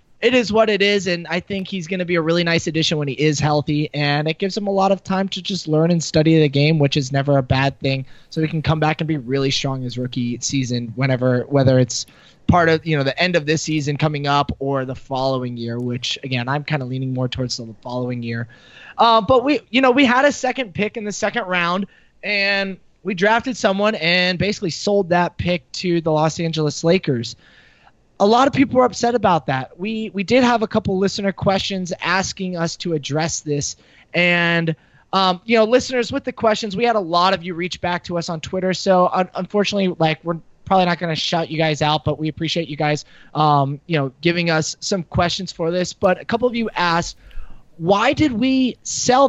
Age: 20-39